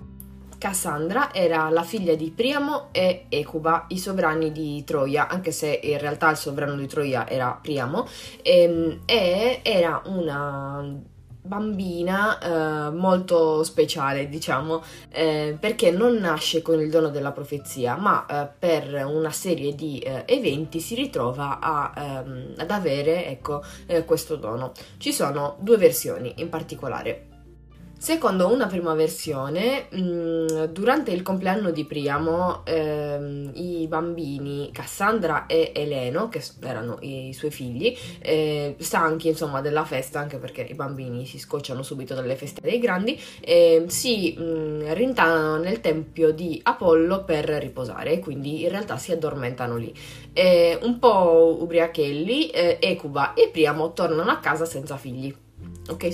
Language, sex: Italian, female